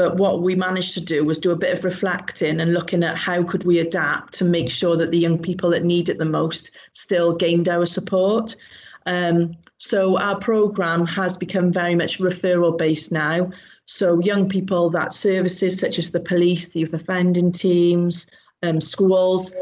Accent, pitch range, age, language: British, 170-185 Hz, 30-49, English